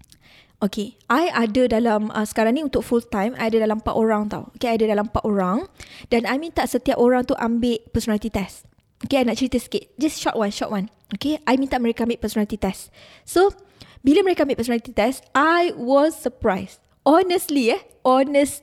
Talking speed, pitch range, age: 195 wpm, 230-300 Hz, 20-39